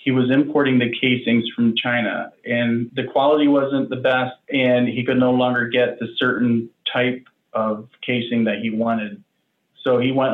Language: English